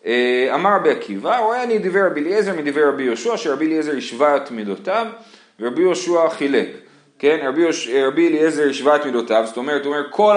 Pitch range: 135-195 Hz